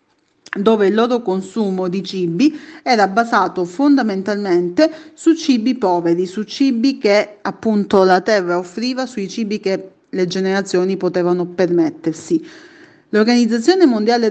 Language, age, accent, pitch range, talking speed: Italian, 30-49, native, 185-255 Hz, 115 wpm